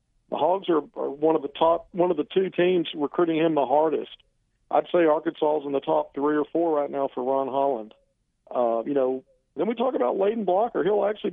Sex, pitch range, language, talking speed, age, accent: male, 140-165 Hz, English, 230 wpm, 50-69, American